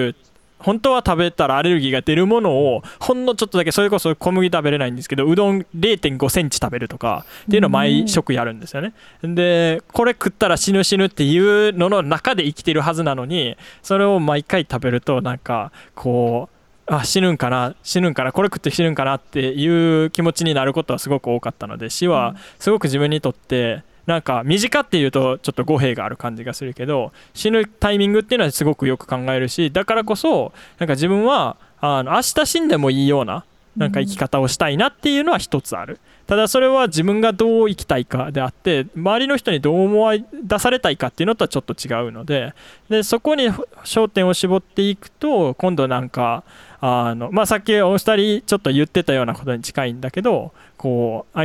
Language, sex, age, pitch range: Japanese, male, 20-39, 130-200 Hz